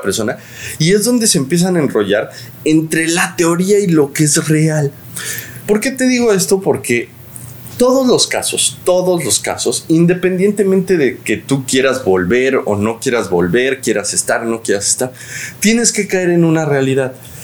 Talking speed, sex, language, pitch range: 170 wpm, male, English, 130-195 Hz